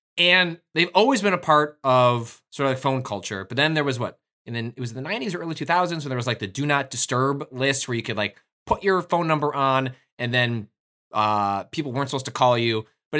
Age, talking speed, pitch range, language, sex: 20-39, 255 wpm, 115-155 Hz, English, male